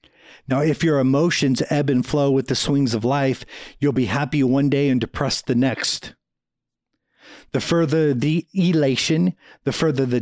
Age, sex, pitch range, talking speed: 50-69, male, 125-155 Hz, 165 wpm